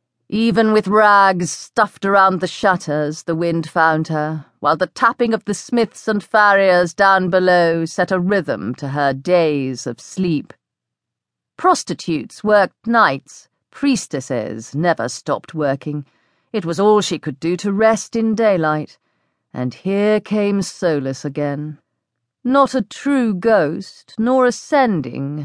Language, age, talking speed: English, 40-59, 135 wpm